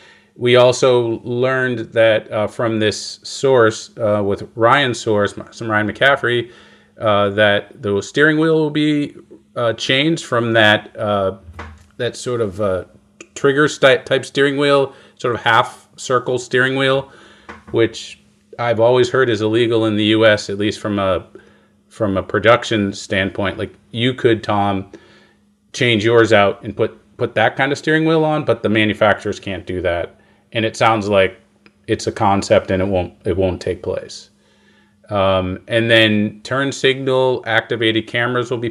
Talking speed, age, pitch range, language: 160 wpm, 40-59, 105-125 Hz, English